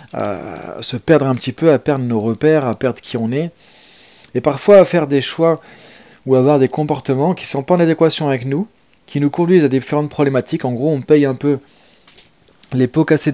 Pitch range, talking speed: 125-155 Hz, 220 wpm